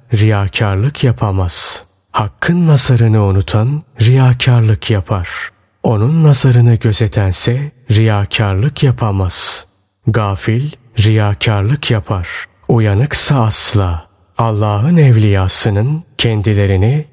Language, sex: Turkish, male